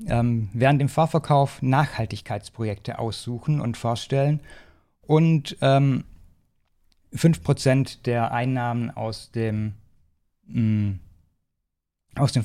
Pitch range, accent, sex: 105-135 Hz, German, male